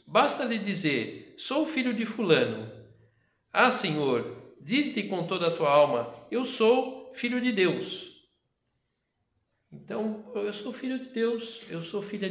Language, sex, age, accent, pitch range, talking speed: Portuguese, male, 60-79, Brazilian, 150-235 Hz, 145 wpm